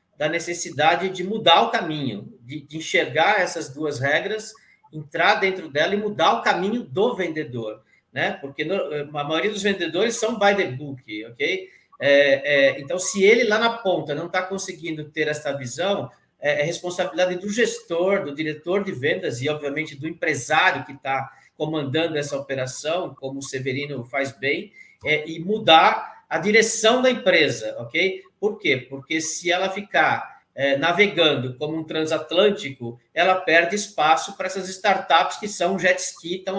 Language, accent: Portuguese, Brazilian